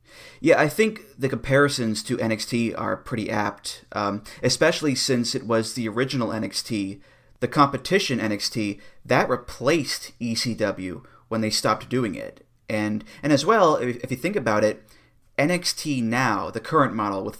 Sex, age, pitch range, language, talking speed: male, 30-49, 110-135 Hz, English, 155 wpm